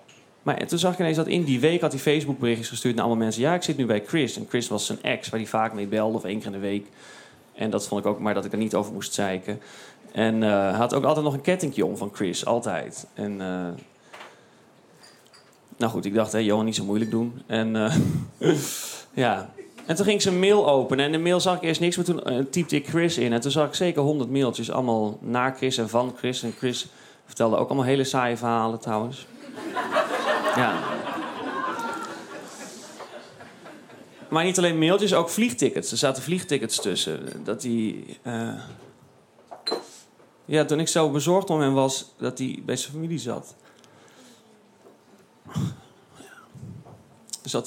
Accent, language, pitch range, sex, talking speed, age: Dutch, Dutch, 110-155 Hz, male, 195 wpm, 30-49